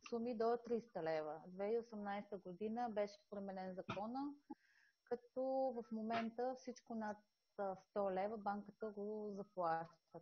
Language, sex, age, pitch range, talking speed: Bulgarian, female, 30-49, 185-230 Hz, 115 wpm